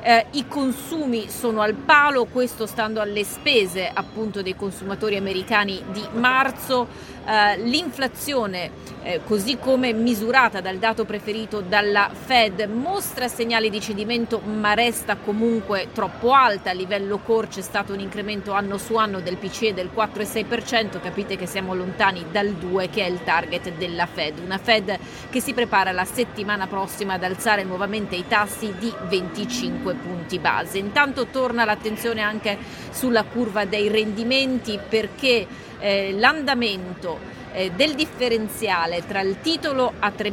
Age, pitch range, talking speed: 30-49, 195-235 Hz, 145 wpm